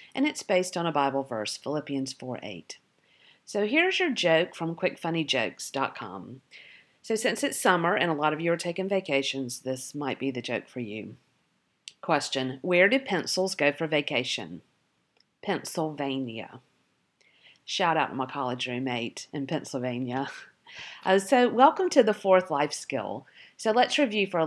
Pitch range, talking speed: 145-195 Hz, 155 wpm